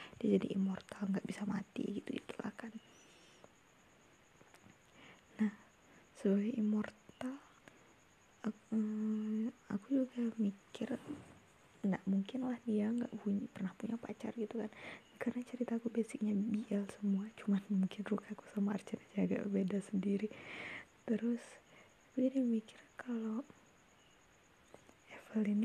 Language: Indonesian